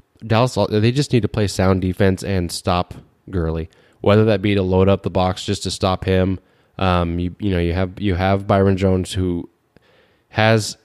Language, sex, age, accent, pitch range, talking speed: English, male, 20-39, American, 90-105 Hz, 195 wpm